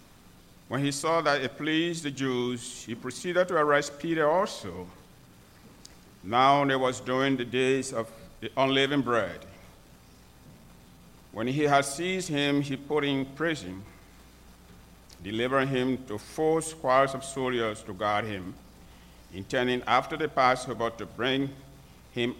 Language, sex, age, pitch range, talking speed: English, male, 60-79, 100-145 Hz, 135 wpm